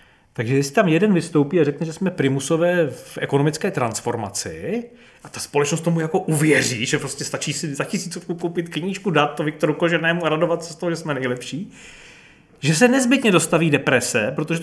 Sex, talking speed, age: male, 185 wpm, 30-49